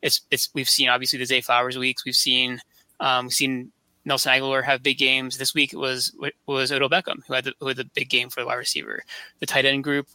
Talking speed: 240 wpm